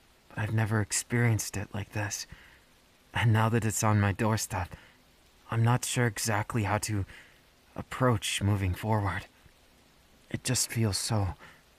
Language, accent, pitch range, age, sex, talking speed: English, American, 95-115 Hz, 30-49, male, 130 wpm